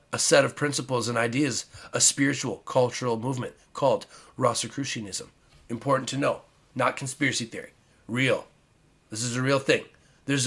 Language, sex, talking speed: English, male, 145 wpm